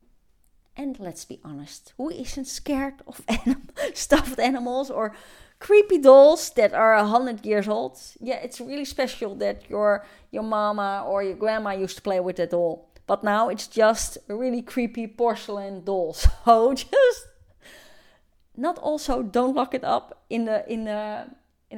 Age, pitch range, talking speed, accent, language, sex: 30-49, 210-275 Hz, 165 wpm, Dutch, English, female